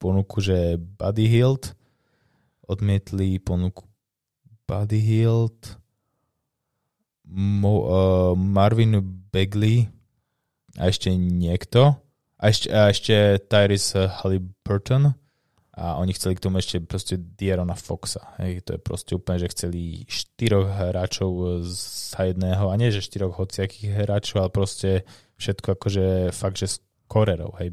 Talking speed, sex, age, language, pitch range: 120 wpm, male, 20-39, Slovak, 95-110 Hz